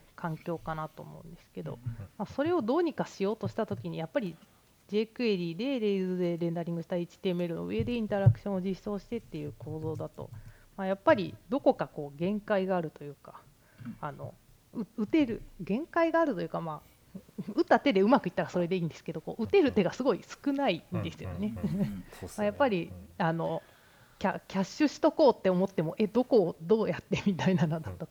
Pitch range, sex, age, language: 165-220 Hz, female, 30-49, Japanese